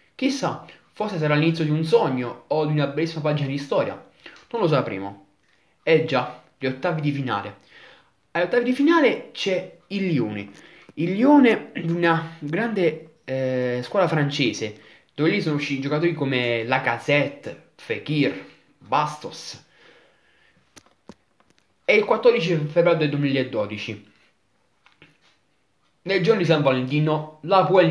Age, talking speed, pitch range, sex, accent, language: 20-39, 130 wpm, 140-175 Hz, male, native, Italian